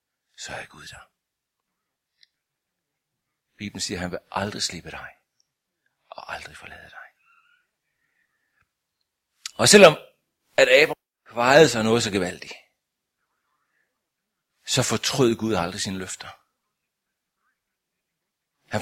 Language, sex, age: Danish, male, 60-79